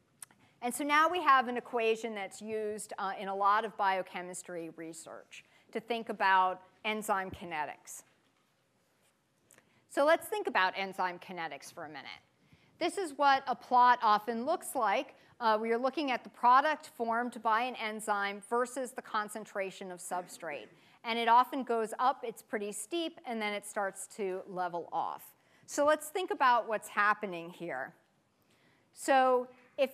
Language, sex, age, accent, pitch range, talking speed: English, female, 40-59, American, 195-260 Hz, 155 wpm